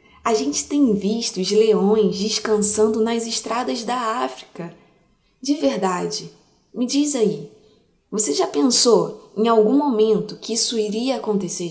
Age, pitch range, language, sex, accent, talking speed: 20-39, 210-260 Hz, Portuguese, female, Brazilian, 135 wpm